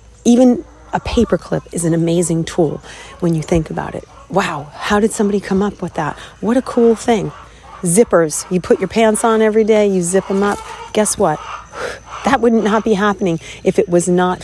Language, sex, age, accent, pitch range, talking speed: English, female, 40-59, American, 175-230 Hz, 195 wpm